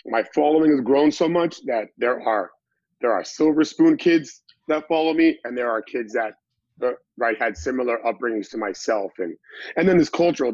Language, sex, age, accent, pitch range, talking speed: English, male, 30-49, American, 105-130 Hz, 195 wpm